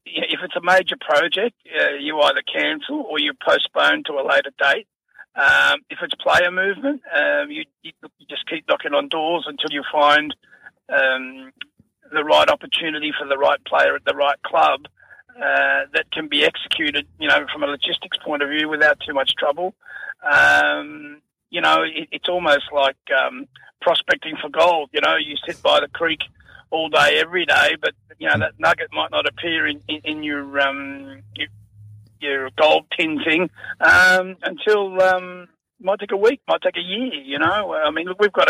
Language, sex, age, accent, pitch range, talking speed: English, male, 30-49, Australian, 145-230 Hz, 185 wpm